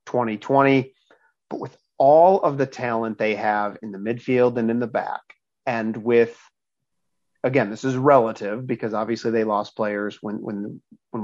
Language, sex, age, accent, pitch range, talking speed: English, male, 40-59, American, 110-130 Hz, 160 wpm